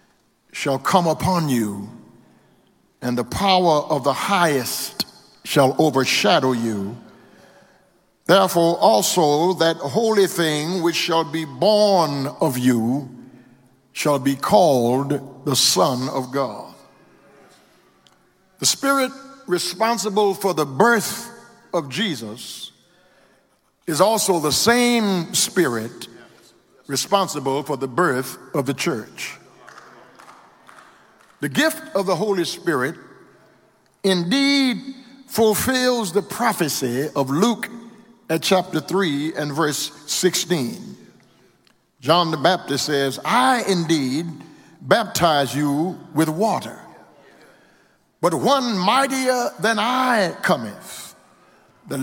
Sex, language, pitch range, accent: male, English, 140-205 Hz, American